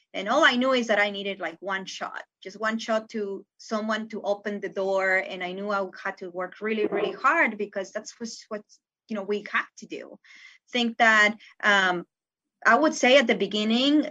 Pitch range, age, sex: 195-245 Hz, 20-39, female